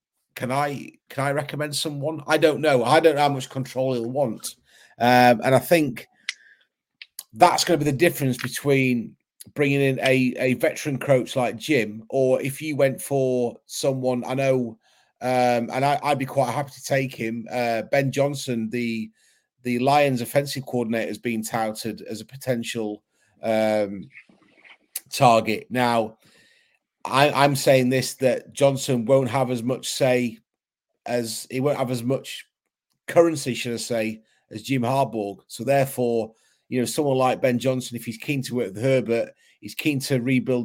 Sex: male